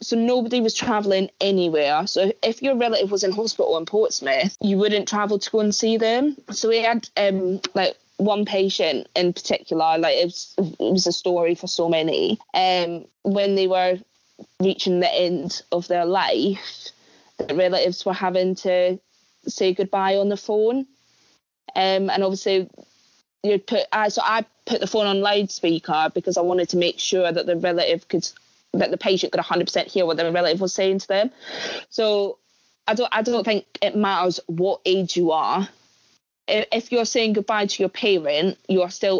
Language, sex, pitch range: English, female, 175-210 Hz